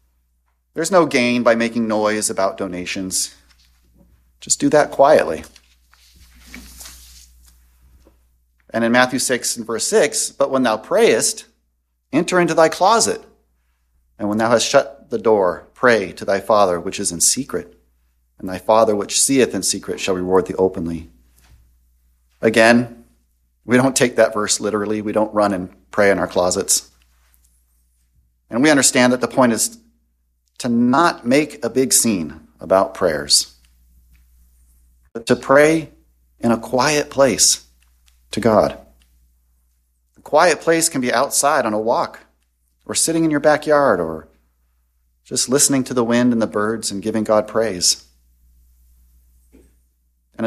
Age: 40-59